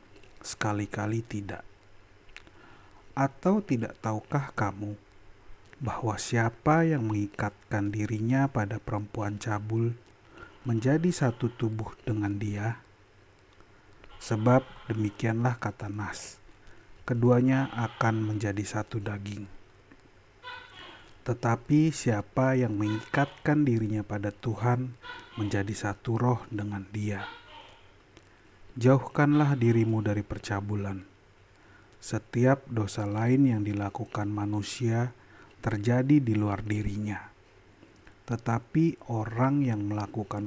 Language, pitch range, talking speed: Indonesian, 105-120 Hz, 85 wpm